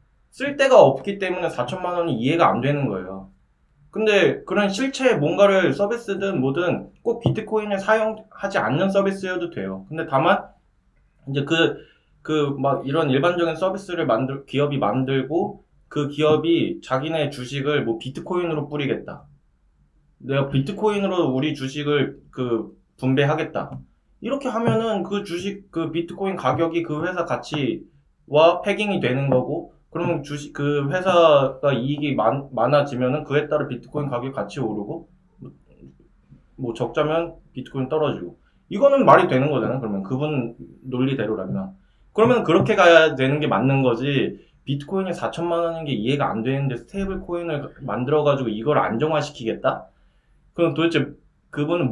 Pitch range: 130-185 Hz